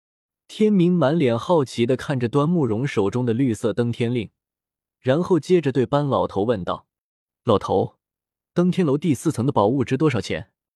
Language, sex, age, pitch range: Chinese, male, 20-39, 115-170 Hz